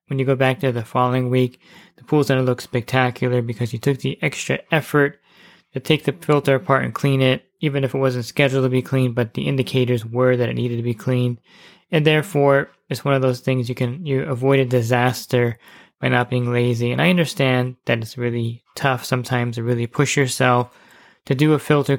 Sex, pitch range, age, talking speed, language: male, 125-140 Hz, 20-39, 215 wpm, English